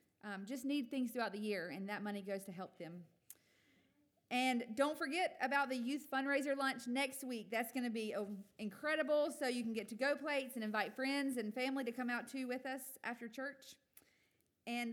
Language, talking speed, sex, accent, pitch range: English, 200 wpm, female, American, 205-250 Hz